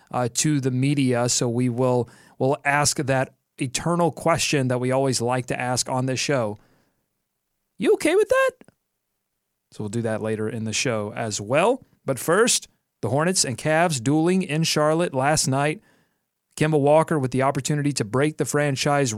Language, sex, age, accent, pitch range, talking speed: English, male, 30-49, American, 130-150 Hz, 170 wpm